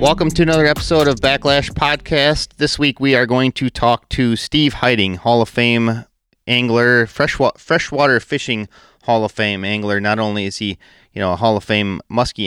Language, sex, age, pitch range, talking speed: English, male, 30-49, 105-130 Hz, 190 wpm